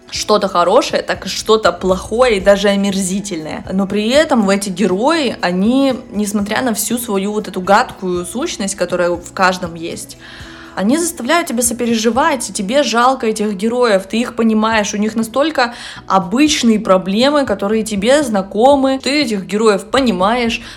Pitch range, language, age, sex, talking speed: 190-245 Hz, Russian, 20-39, female, 145 wpm